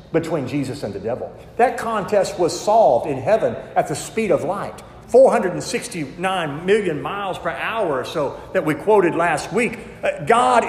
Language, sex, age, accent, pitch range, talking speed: English, male, 50-69, American, 185-240 Hz, 165 wpm